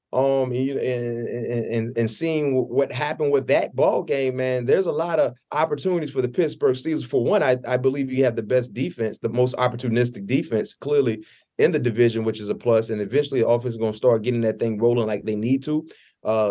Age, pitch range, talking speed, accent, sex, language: 30-49, 120-150 Hz, 225 wpm, American, male, English